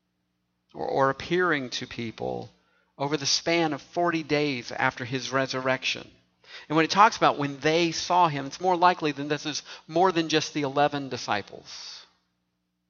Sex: male